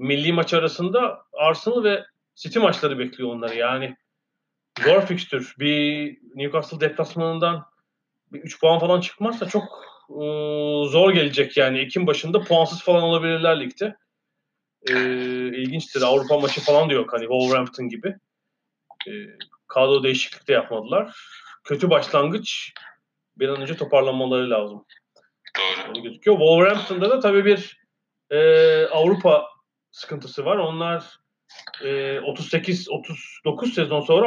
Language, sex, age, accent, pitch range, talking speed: Turkish, male, 40-59, native, 140-180 Hz, 115 wpm